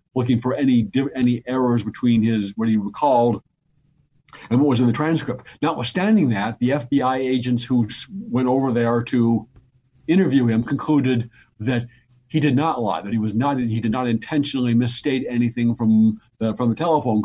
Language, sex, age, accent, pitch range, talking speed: English, male, 50-69, American, 115-135 Hz, 170 wpm